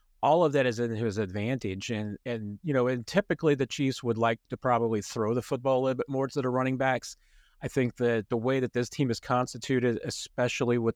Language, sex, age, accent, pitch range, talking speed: English, male, 40-59, American, 115-130 Hz, 235 wpm